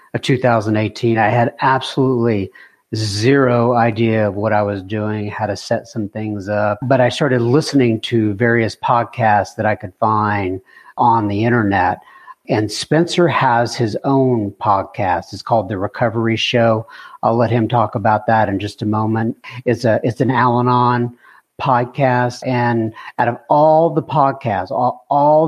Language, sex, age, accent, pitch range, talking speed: English, male, 50-69, American, 110-130 Hz, 160 wpm